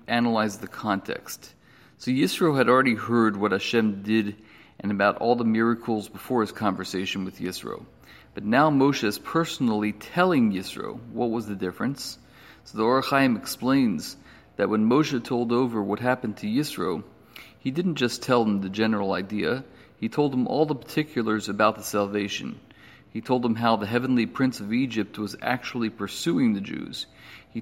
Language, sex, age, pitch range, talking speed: English, male, 40-59, 105-130 Hz, 165 wpm